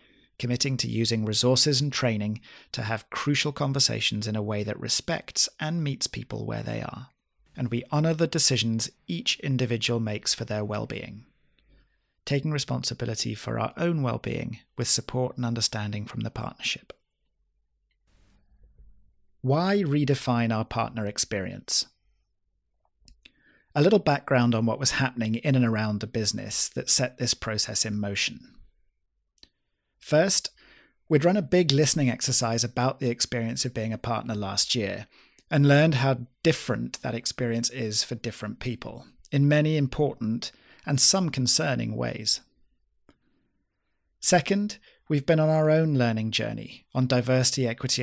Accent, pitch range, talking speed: British, 110-140 Hz, 140 wpm